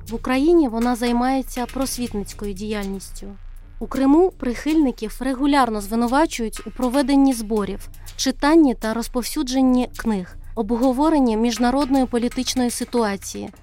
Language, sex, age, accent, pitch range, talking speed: Ukrainian, female, 30-49, native, 215-260 Hz, 95 wpm